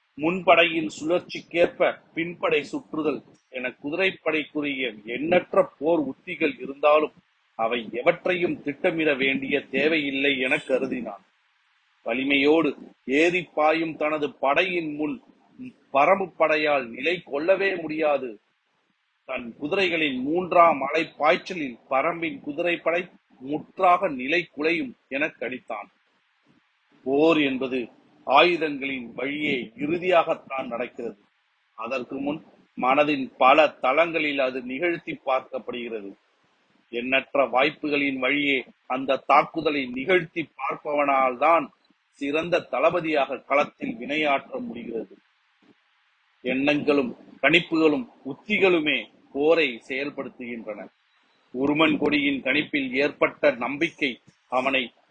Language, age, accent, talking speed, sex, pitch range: Tamil, 40-59, native, 75 wpm, male, 135-175 Hz